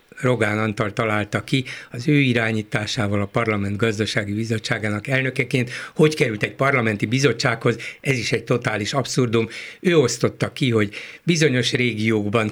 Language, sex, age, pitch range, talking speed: Hungarian, male, 60-79, 115-150 Hz, 135 wpm